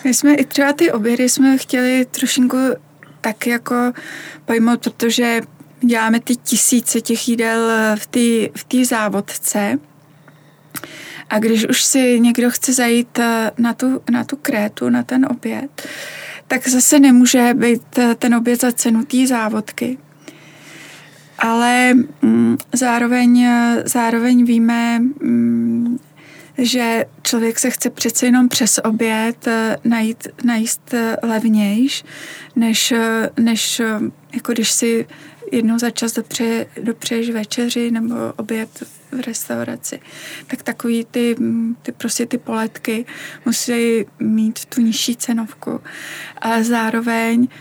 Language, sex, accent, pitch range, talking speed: Czech, female, native, 225-250 Hz, 115 wpm